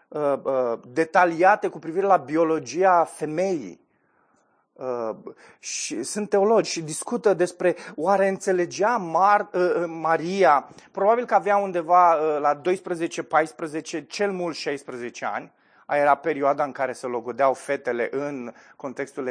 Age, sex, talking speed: 30-49, male, 105 wpm